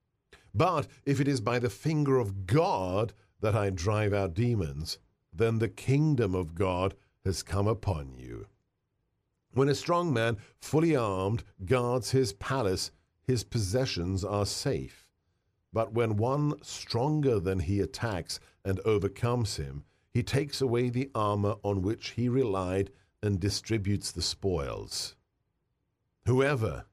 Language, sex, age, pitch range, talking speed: English, male, 50-69, 95-120 Hz, 135 wpm